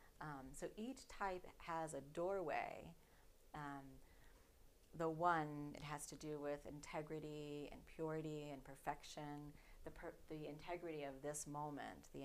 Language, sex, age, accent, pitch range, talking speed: English, female, 30-49, American, 145-165 Hz, 135 wpm